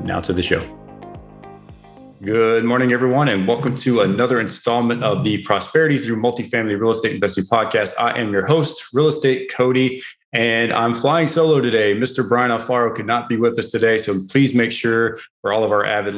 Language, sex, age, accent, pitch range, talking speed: English, male, 30-49, American, 100-120 Hz, 190 wpm